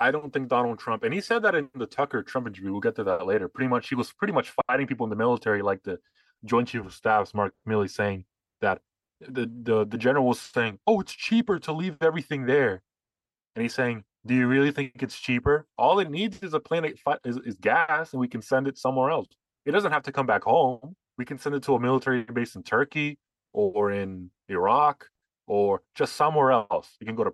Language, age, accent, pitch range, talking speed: English, 20-39, American, 110-150 Hz, 235 wpm